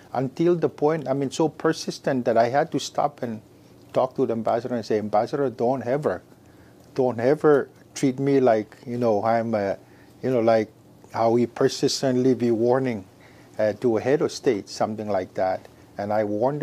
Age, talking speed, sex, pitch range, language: 50-69, 185 wpm, male, 110-130 Hz, English